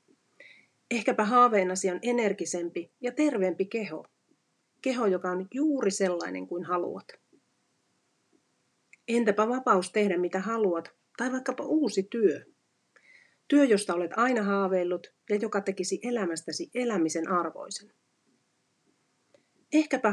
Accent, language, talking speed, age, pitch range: native, Finnish, 105 wpm, 40-59, 180-245 Hz